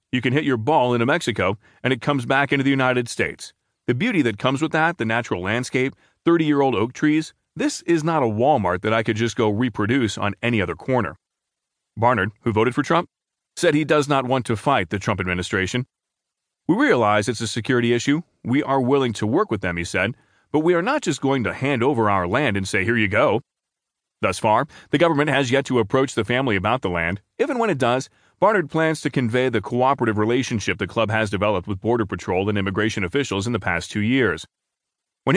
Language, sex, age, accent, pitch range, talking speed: English, male, 30-49, American, 105-140 Hz, 215 wpm